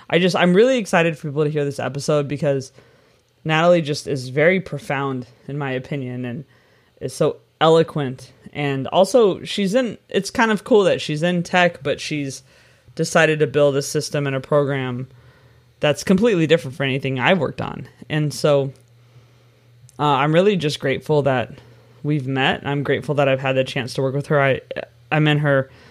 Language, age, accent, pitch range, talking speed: English, 20-39, American, 130-155 Hz, 185 wpm